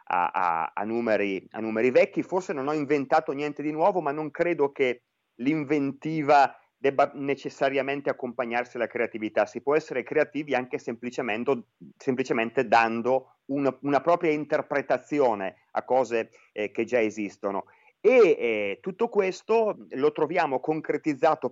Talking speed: 135 wpm